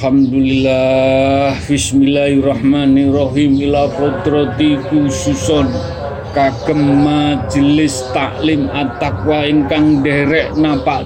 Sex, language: male, Indonesian